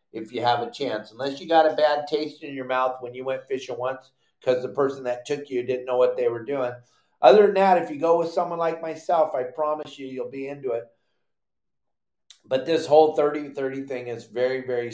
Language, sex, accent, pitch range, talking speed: English, male, American, 130-160 Hz, 225 wpm